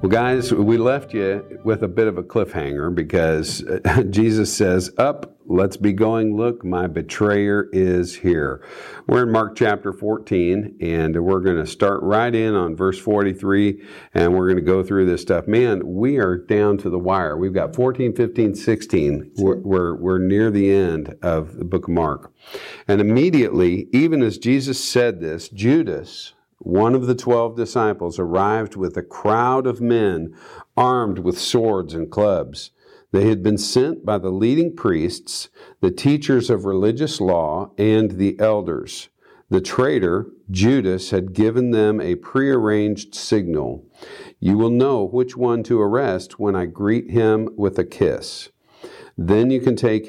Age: 50-69